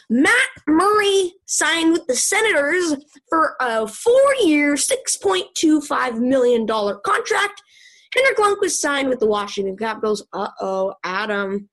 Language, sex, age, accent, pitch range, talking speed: English, female, 20-39, American, 220-340 Hz, 105 wpm